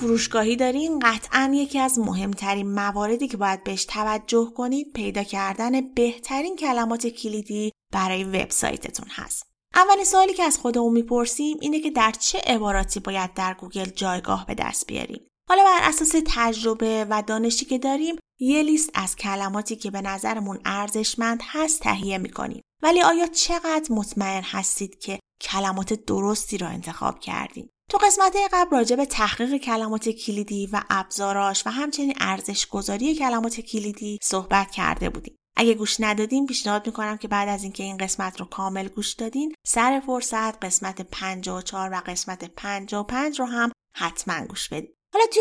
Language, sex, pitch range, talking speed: Persian, female, 200-270 Hz, 155 wpm